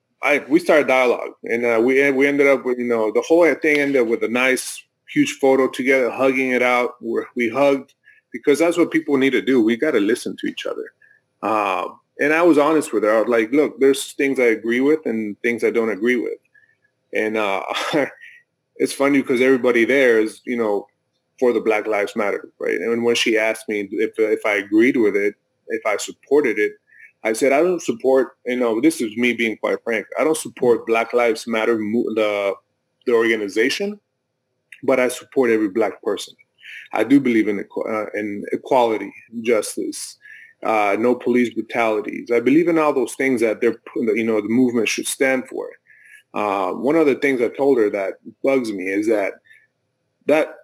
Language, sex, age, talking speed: English, male, 30-49, 195 wpm